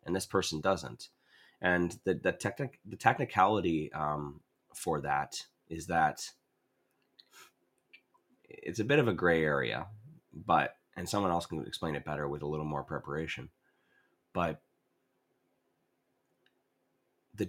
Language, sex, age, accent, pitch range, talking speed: English, male, 30-49, American, 80-95 Hz, 125 wpm